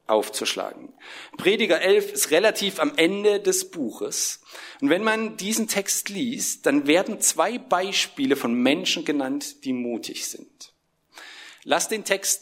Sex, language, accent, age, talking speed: male, German, German, 50-69, 135 wpm